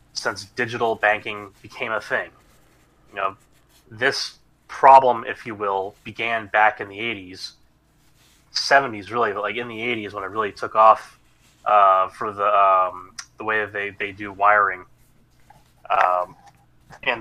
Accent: American